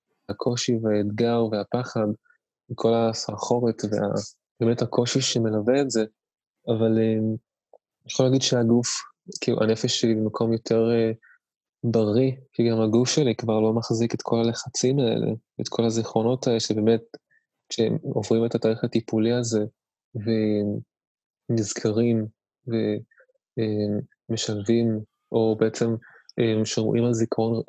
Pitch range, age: 110-120 Hz, 20-39